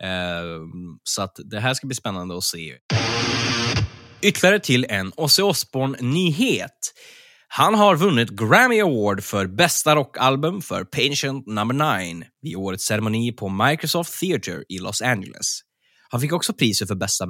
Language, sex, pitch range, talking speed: Swedish, male, 95-150 Hz, 140 wpm